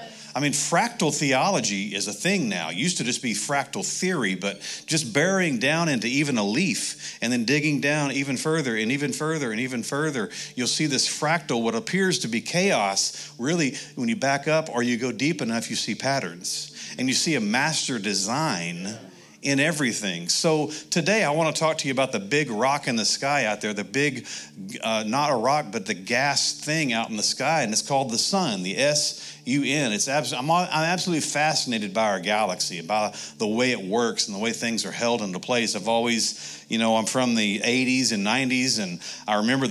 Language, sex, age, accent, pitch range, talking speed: English, male, 40-59, American, 110-150 Hz, 205 wpm